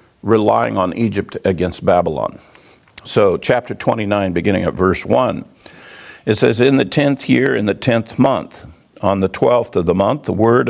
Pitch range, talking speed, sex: 95-125 Hz, 170 wpm, male